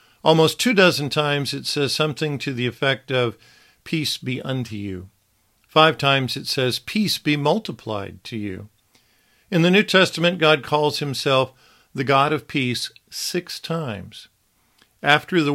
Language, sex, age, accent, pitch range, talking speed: English, male, 50-69, American, 115-150 Hz, 150 wpm